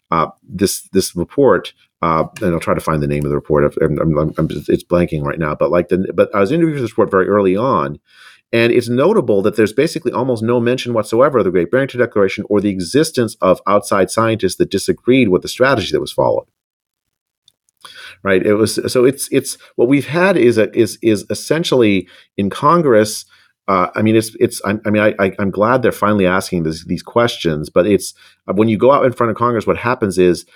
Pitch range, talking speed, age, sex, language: 95-120 Hz, 220 wpm, 40-59, male, English